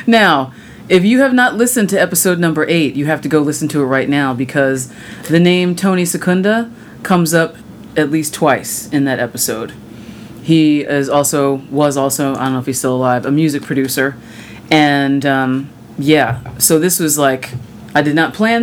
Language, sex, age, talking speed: English, female, 30-49, 185 wpm